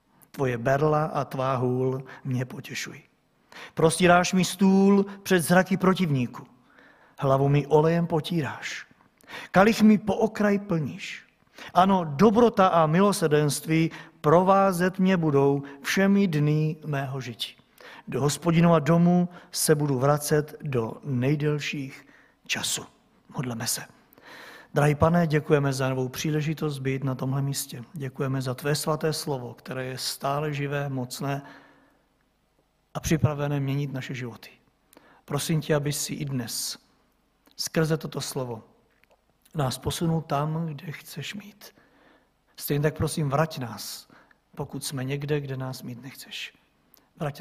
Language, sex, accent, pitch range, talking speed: Czech, male, native, 135-170 Hz, 125 wpm